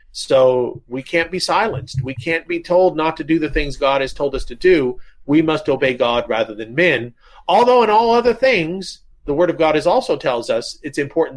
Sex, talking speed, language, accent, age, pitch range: male, 220 wpm, English, American, 40-59, 135-180 Hz